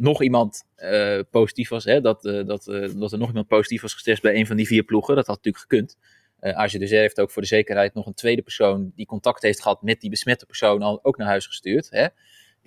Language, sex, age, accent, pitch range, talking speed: Dutch, male, 20-39, Dutch, 105-125 Hz, 245 wpm